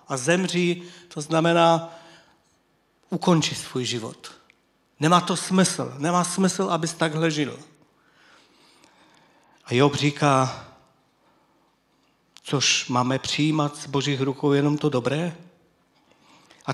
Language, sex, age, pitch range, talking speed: Czech, male, 50-69, 130-170 Hz, 100 wpm